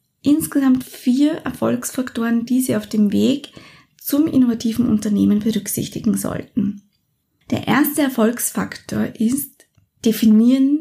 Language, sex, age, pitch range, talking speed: German, female, 20-39, 210-255 Hz, 100 wpm